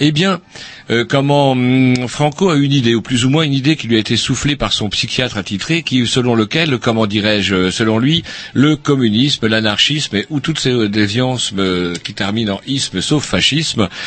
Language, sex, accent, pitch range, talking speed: French, male, French, 105-140 Hz, 205 wpm